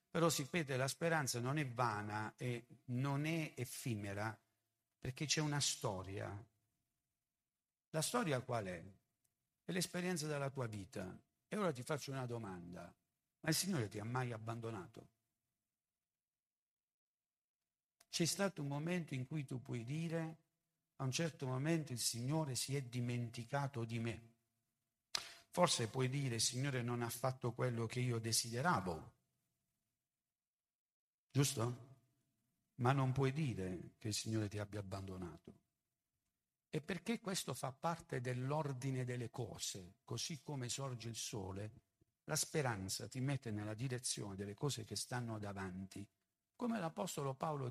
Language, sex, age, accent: Italian, male, 60-79, native